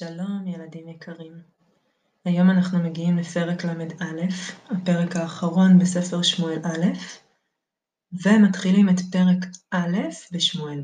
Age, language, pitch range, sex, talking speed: 20-39, Hebrew, 165-185 Hz, female, 100 wpm